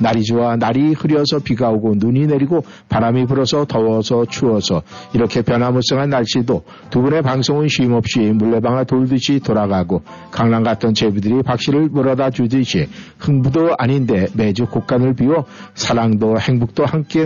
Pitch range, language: 110-140 Hz, Korean